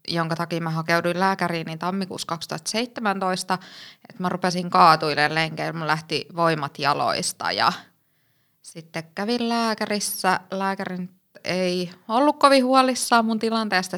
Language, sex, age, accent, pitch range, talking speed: Finnish, female, 20-39, native, 170-205 Hz, 120 wpm